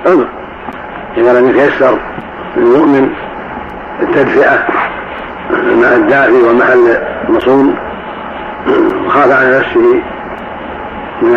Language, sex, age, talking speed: Arabic, male, 60-79, 80 wpm